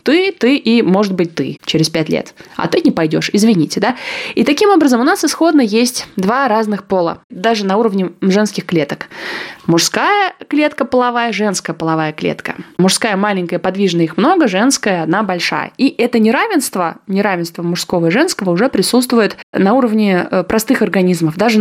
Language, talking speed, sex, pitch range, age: Russian, 160 wpm, female, 175-245 Hz, 20-39